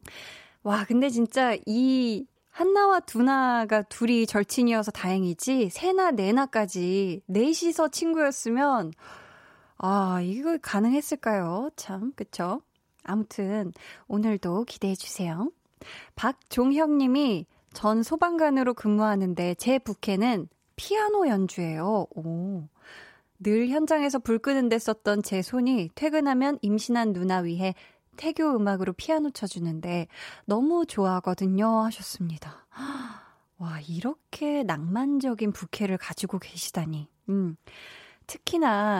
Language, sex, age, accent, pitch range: Korean, female, 20-39, native, 190-265 Hz